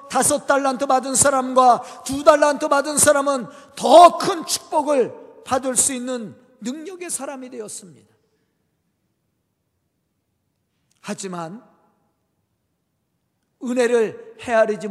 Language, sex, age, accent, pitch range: Korean, male, 50-69, native, 195-260 Hz